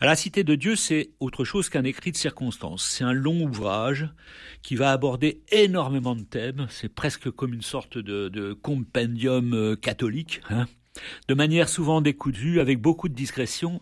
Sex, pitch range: male, 115-155 Hz